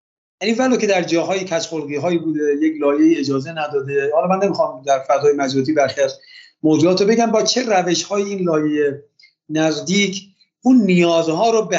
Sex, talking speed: male, 165 wpm